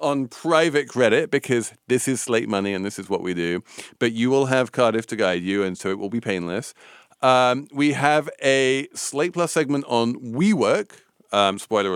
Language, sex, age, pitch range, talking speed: English, male, 40-59, 100-140 Hz, 195 wpm